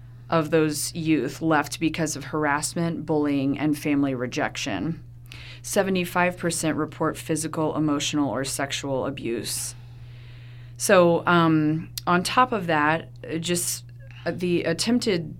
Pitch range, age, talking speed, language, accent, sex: 135-160 Hz, 30-49, 105 wpm, English, American, female